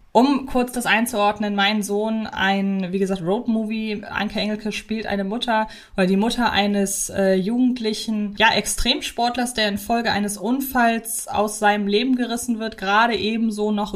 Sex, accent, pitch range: female, German, 200-230 Hz